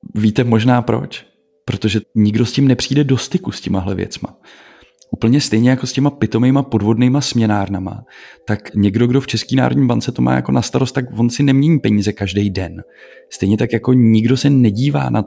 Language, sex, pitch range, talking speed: Czech, male, 100-125 Hz, 185 wpm